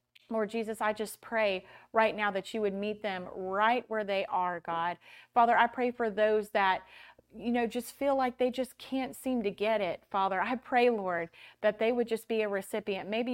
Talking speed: 210 wpm